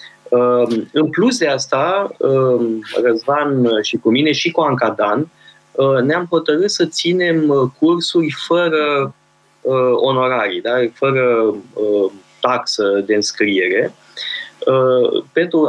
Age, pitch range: 20-39, 120-165 Hz